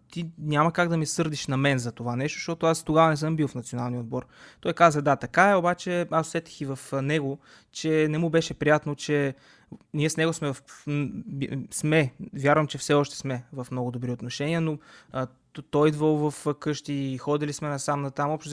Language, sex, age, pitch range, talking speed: Bulgarian, male, 20-39, 130-155 Hz, 215 wpm